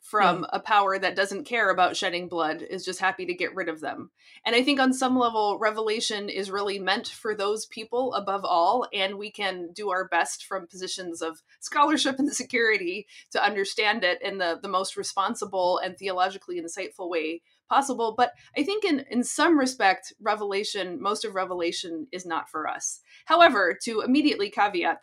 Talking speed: 180 wpm